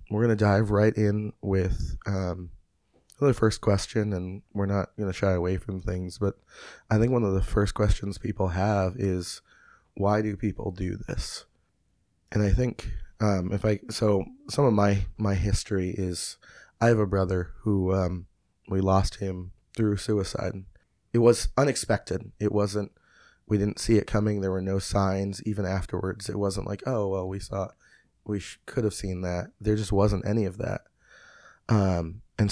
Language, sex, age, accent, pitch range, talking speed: English, male, 20-39, American, 95-105 Hz, 180 wpm